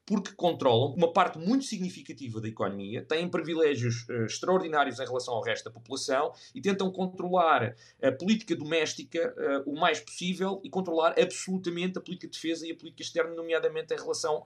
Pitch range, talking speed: 135-185 Hz, 165 wpm